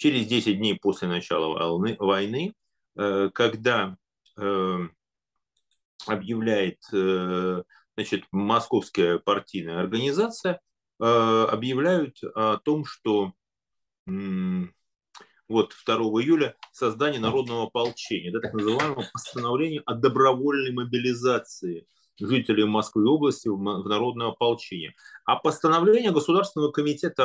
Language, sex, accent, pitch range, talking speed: Russian, male, native, 95-145 Hz, 80 wpm